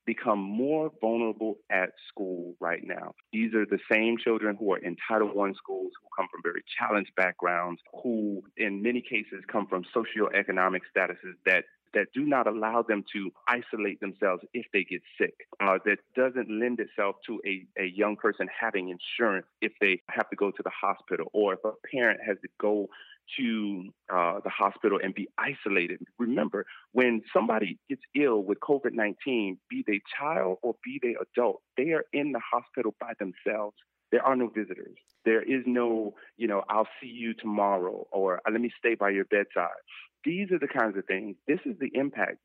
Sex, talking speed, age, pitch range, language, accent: male, 185 wpm, 30-49, 105-145 Hz, English, American